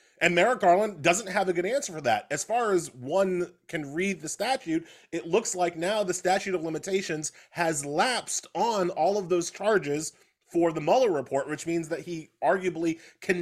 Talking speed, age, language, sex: 190 wpm, 30-49, English, male